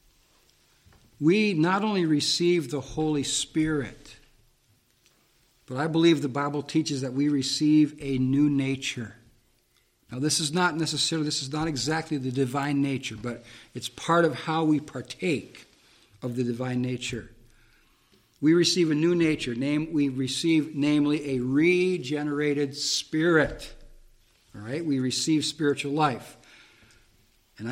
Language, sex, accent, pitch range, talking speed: English, male, American, 130-160 Hz, 130 wpm